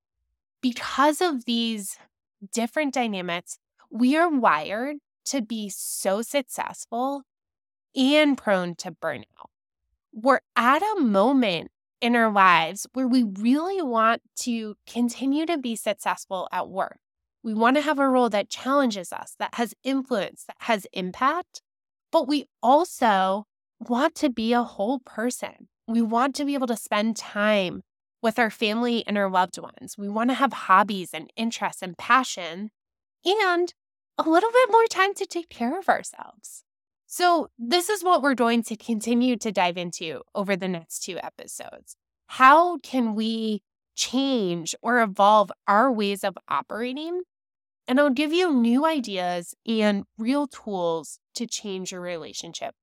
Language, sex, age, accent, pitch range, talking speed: English, female, 10-29, American, 200-275 Hz, 150 wpm